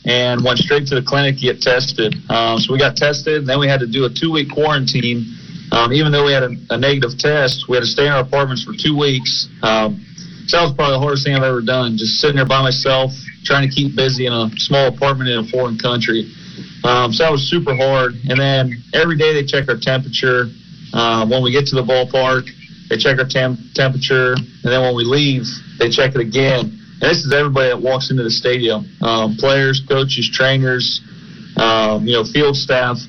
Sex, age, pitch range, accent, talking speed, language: male, 40-59, 125-140 Hz, American, 220 wpm, English